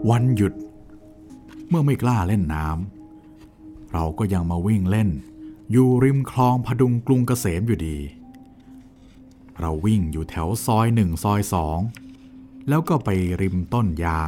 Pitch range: 90-130 Hz